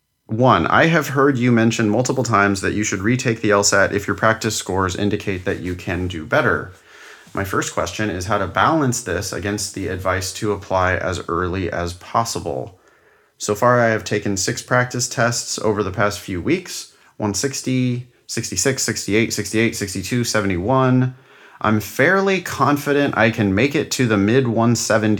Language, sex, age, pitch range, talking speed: English, male, 30-49, 95-115 Hz, 165 wpm